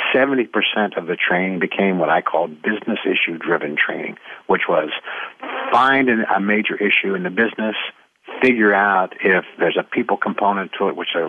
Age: 50-69